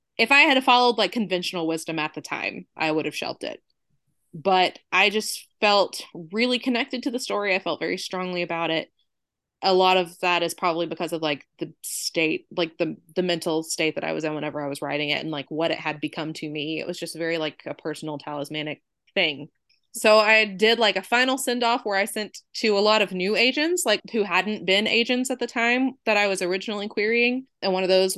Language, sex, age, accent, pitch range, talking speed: English, female, 20-39, American, 165-225 Hz, 225 wpm